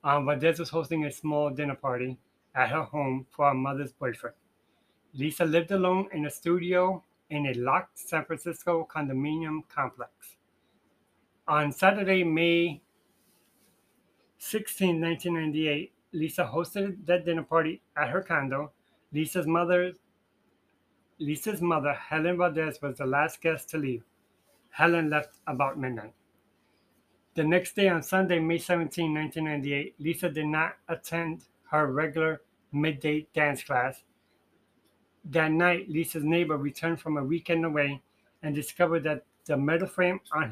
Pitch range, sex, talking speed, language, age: 145-170 Hz, male, 130 wpm, English, 30-49